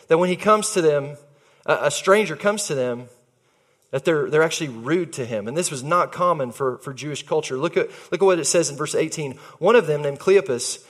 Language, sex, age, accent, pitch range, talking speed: English, male, 30-49, American, 135-205 Hz, 230 wpm